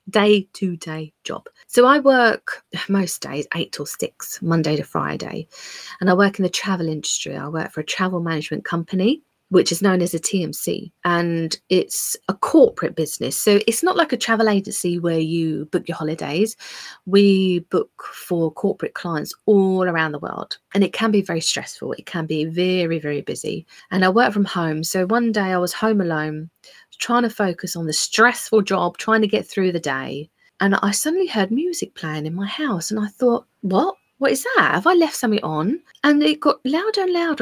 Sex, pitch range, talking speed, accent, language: female, 170-265 Hz, 200 wpm, British, English